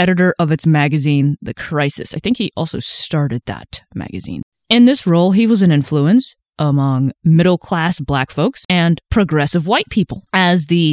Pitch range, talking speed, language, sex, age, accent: 140-185 Hz, 170 wpm, English, female, 20-39, American